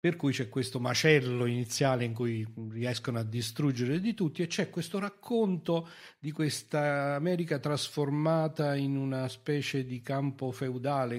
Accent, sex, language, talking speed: native, male, Italian, 145 wpm